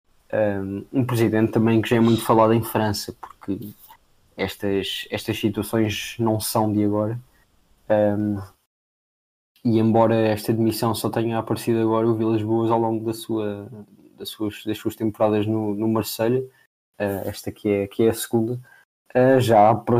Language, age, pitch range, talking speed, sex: Portuguese, 20-39, 105-115 Hz, 135 wpm, male